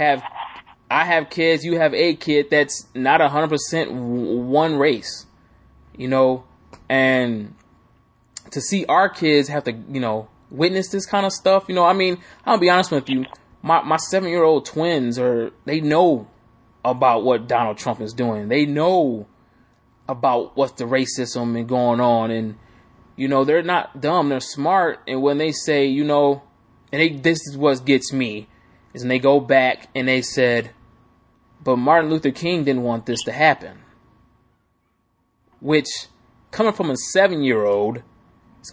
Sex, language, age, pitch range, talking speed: male, English, 20-39, 120-155 Hz, 165 wpm